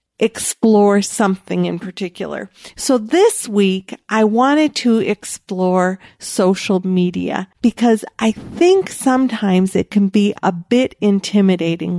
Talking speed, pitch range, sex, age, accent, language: 115 wpm, 190-235 Hz, female, 50-69, American, English